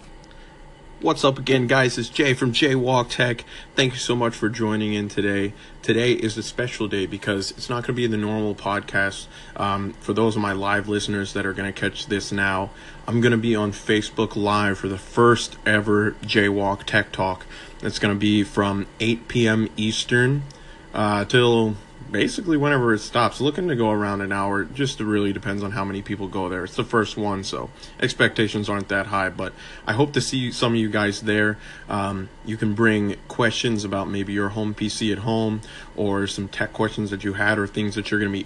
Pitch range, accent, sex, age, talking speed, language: 100-115 Hz, American, male, 30-49, 210 wpm, English